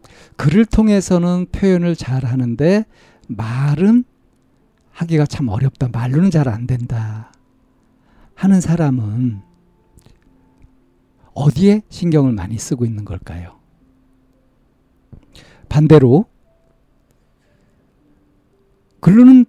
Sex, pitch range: male, 120-170 Hz